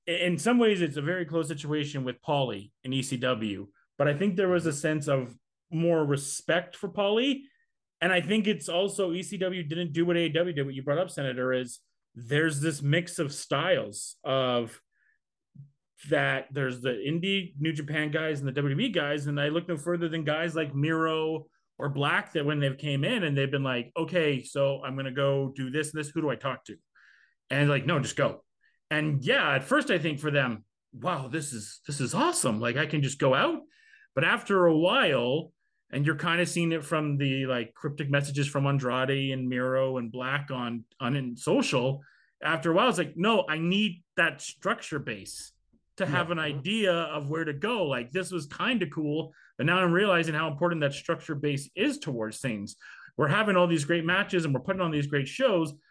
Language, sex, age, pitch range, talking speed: English, male, 30-49, 140-175 Hz, 205 wpm